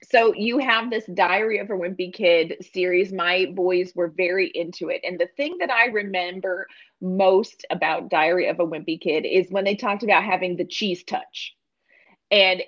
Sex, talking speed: female, 185 wpm